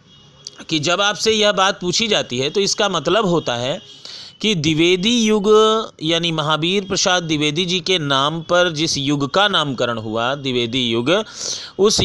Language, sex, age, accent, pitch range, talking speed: Hindi, male, 40-59, native, 150-200 Hz, 160 wpm